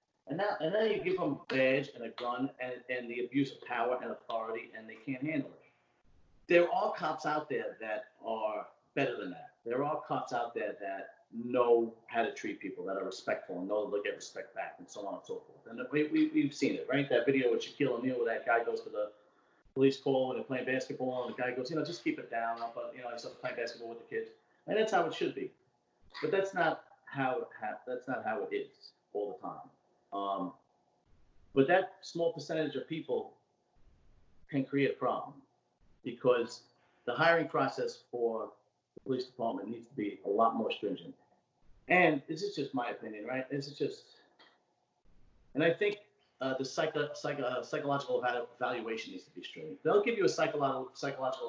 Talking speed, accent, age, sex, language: 210 wpm, American, 40-59, male, English